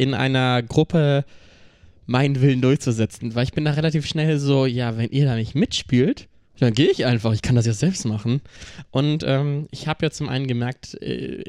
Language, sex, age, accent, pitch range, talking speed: German, male, 20-39, German, 120-145 Hz, 200 wpm